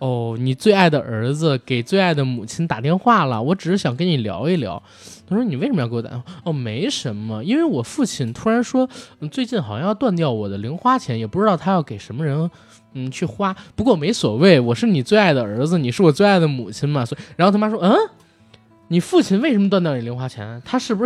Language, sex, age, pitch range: Chinese, male, 20-39, 130-195 Hz